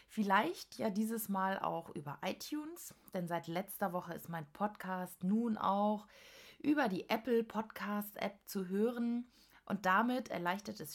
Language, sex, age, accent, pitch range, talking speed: German, female, 30-49, German, 175-225 Hz, 150 wpm